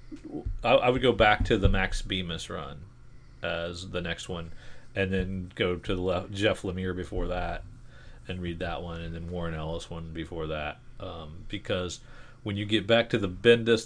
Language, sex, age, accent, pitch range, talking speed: English, male, 40-59, American, 80-100 Hz, 185 wpm